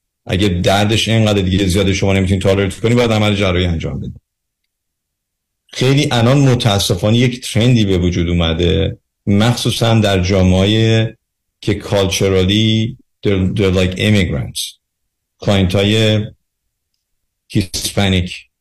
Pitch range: 95-110 Hz